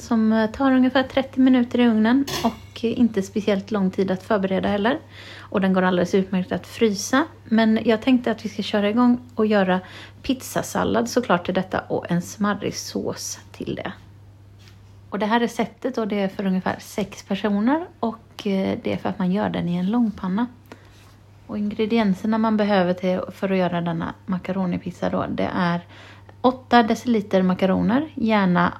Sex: female